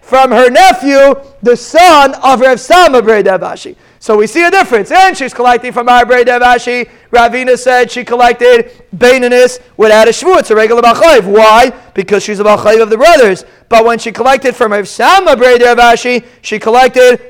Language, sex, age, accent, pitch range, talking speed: English, male, 40-59, American, 220-260 Hz, 175 wpm